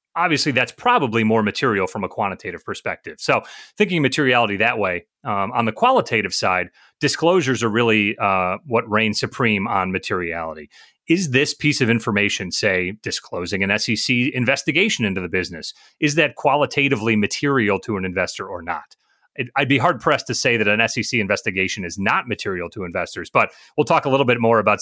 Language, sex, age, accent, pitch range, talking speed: English, male, 30-49, American, 105-140 Hz, 175 wpm